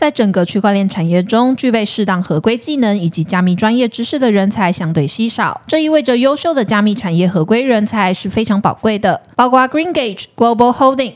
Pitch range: 185-250 Hz